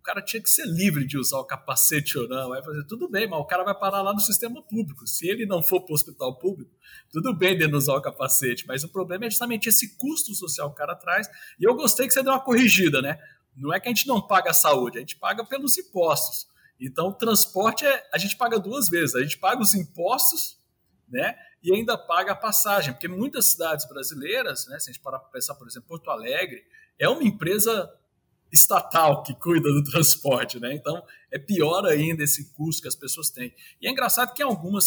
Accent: Brazilian